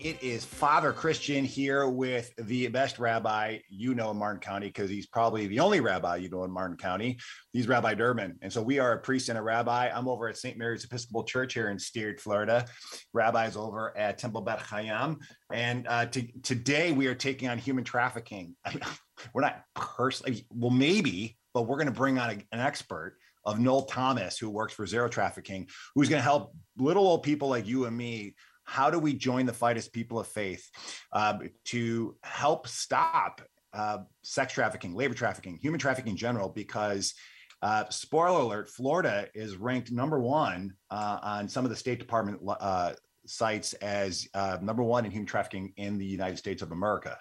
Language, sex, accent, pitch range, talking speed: English, male, American, 105-125 Hz, 195 wpm